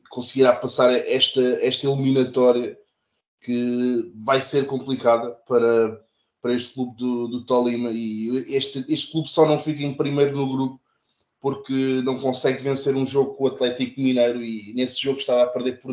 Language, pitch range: Portuguese, 120-130 Hz